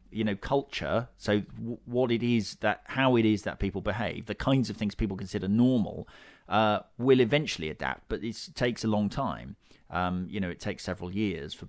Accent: British